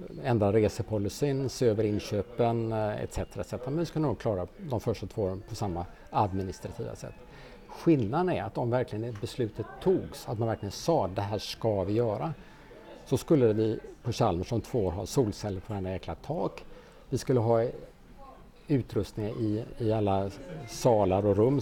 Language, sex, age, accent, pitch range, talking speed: Swedish, male, 50-69, Norwegian, 100-125 Hz, 160 wpm